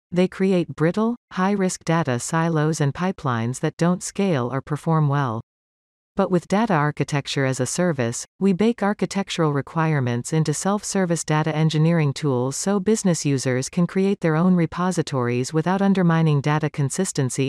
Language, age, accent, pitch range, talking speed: English, 40-59, American, 130-185 Hz, 145 wpm